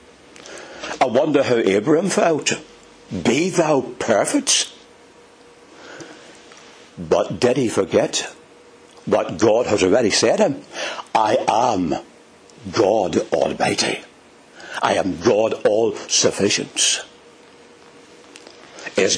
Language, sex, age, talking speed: English, male, 60-79, 90 wpm